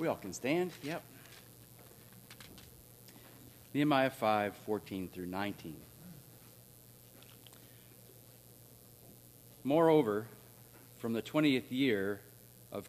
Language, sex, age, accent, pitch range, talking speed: English, male, 40-59, American, 95-125 Hz, 75 wpm